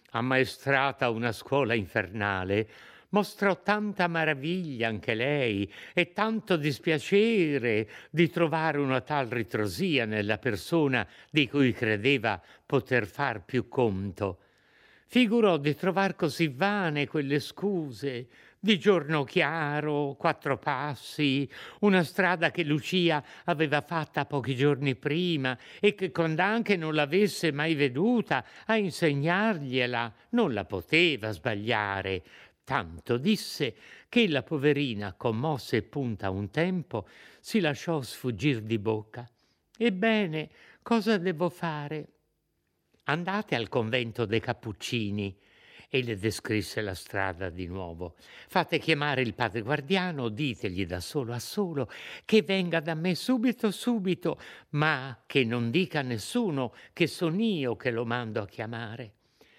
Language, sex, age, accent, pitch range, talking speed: Italian, male, 60-79, native, 120-175 Hz, 120 wpm